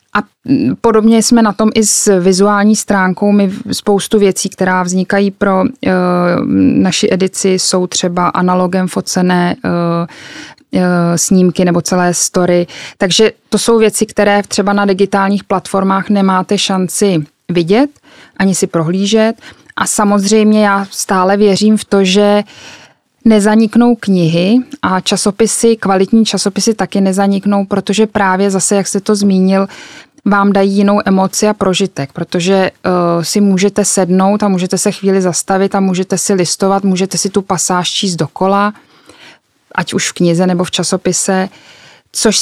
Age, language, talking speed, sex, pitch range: 20-39, Czech, 135 wpm, female, 180-205 Hz